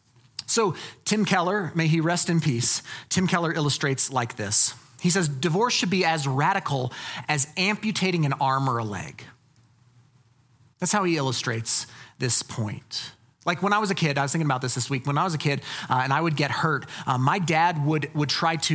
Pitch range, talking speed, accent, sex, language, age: 135-190 Hz, 205 wpm, American, male, English, 30-49